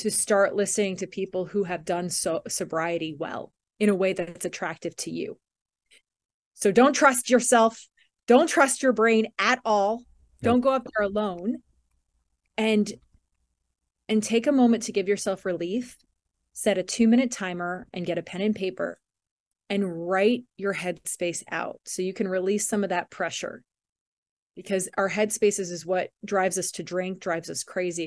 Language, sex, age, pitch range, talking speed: English, female, 30-49, 180-230 Hz, 165 wpm